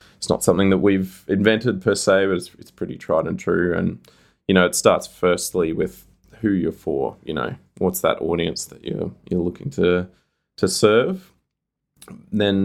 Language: English